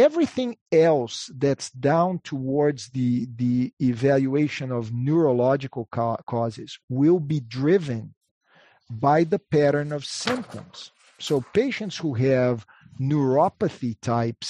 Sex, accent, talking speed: male, Brazilian, 105 wpm